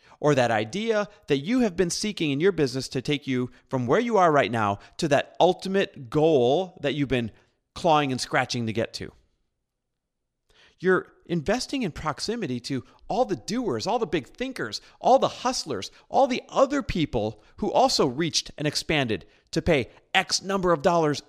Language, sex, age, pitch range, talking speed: English, male, 40-59, 115-155 Hz, 180 wpm